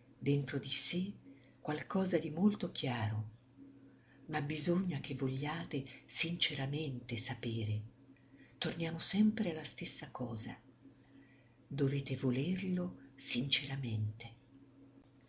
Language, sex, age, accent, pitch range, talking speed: Italian, female, 50-69, native, 125-155 Hz, 80 wpm